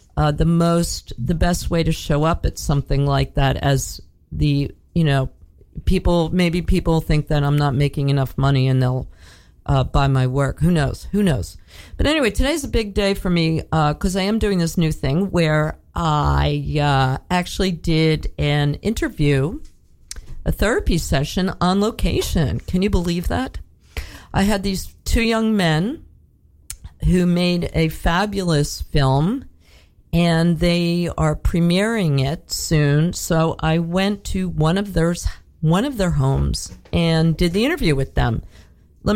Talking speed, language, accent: 160 wpm, English, American